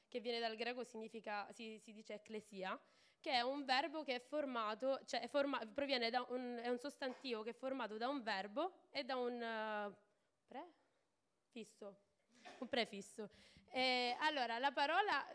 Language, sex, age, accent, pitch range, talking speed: Italian, female, 20-39, native, 225-280 Hz, 160 wpm